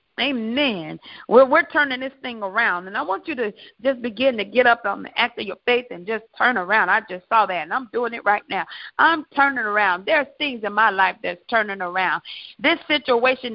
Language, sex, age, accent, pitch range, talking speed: English, female, 50-69, American, 210-265 Hz, 225 wpm